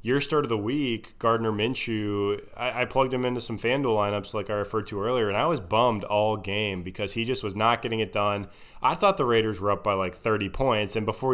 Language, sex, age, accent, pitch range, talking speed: English, male, 20-39, American, 100-115 Hz, 245 wpm